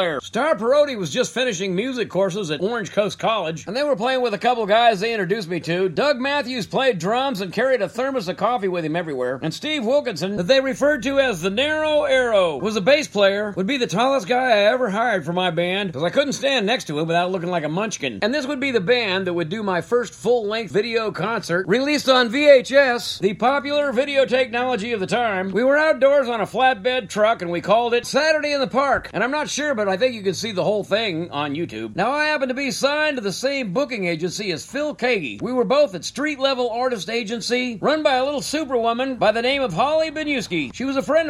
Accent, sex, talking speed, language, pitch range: American, male, 240 wpm, English, 200-275 Hz